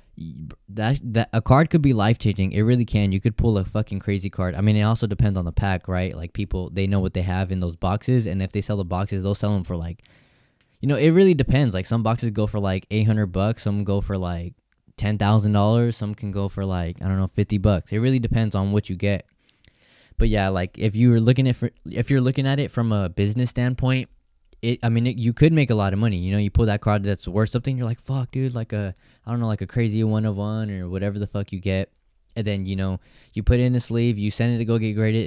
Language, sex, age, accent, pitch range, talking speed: English, male, 10-29, American, 95-115 Hz, 265 wpm